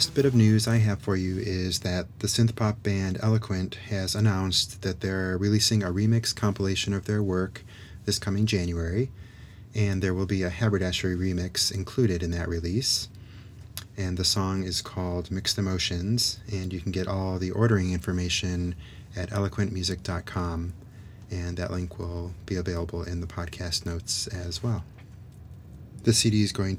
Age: 30-49